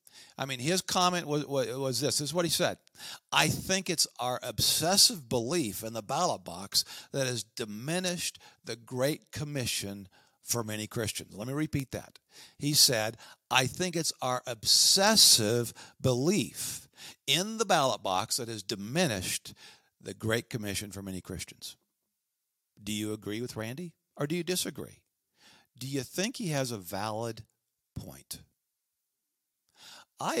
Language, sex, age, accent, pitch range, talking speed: English, male, 50-69, American, 110-150 Hz, 145 wpm